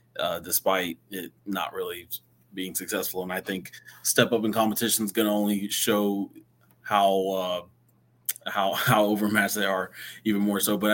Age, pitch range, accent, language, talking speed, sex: 20-39, 100-115 Hz, American, English, 165 wpm, male